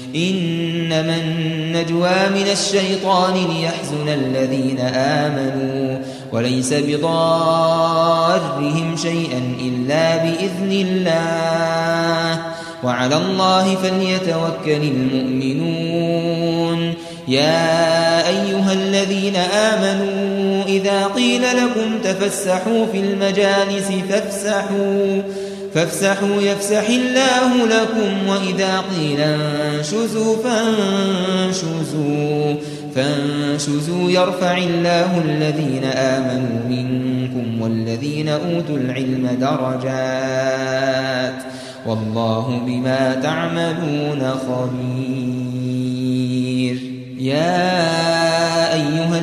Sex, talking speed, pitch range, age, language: male, 65 wpm, 135-190 Hz, 20-39, Arabic